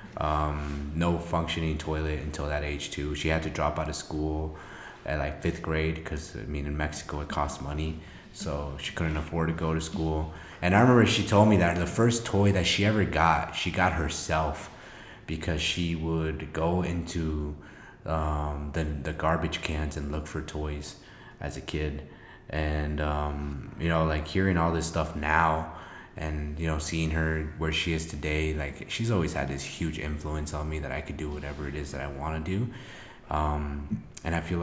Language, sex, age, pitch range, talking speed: English, male, 20-39, 75-85 Hz, 195 wpm